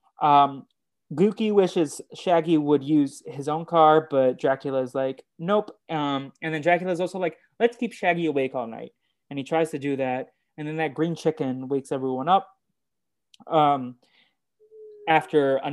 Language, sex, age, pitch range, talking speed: English, male, 20-39, 135-165 Hz, 170 wpm